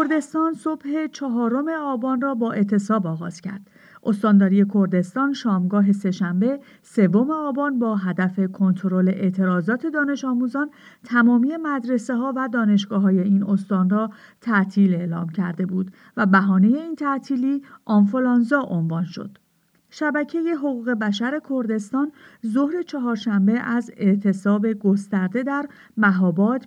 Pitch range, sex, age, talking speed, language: 195-255 Hz, female, 50-69, 115 wpm, English